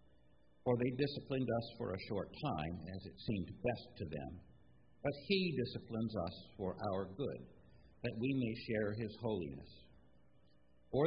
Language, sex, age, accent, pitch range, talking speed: English, male, 60-79, American, 90-135 Hz, 150 wpm